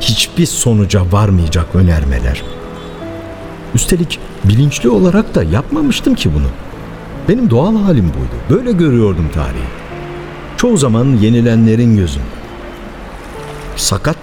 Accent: native